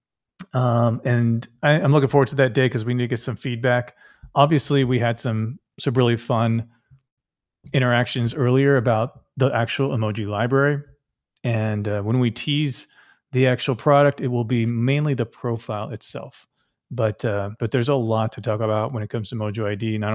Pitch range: 110-130 Hz